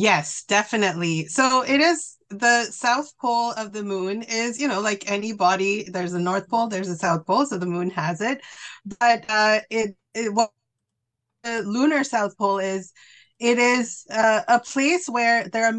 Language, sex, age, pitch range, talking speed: English, female, 30-49, 190-240 Hz, 170 wpm